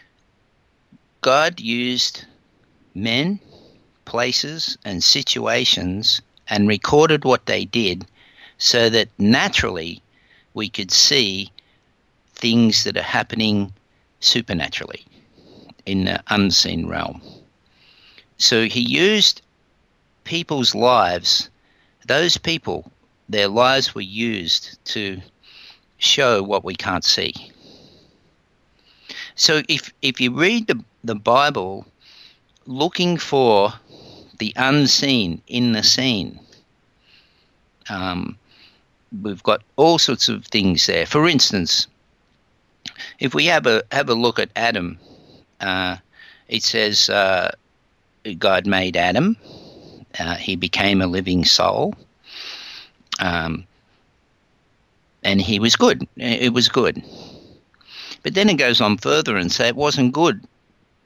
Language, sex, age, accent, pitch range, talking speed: English, male, 50-69, Australian, 100-130 Hz, 105 wpm